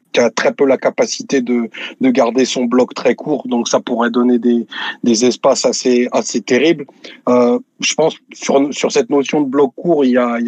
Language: French